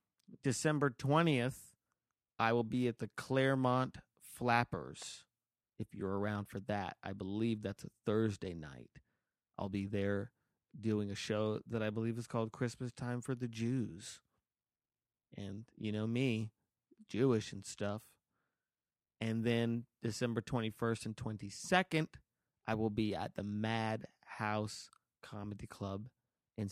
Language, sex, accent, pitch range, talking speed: English, male, American, 100-120 Hz, 130 wpm